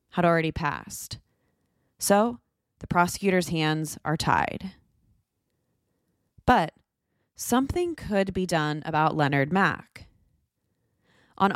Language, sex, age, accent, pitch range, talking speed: English, female, 20-39, American, 150-200 Hz, 95 wpm